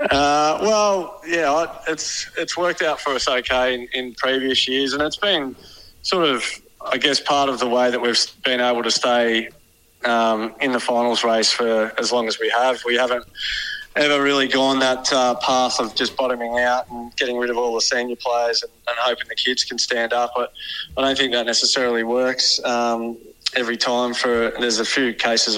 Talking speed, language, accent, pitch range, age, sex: 200 wpm, English, Australian, 115-130 Hz, 20-39, male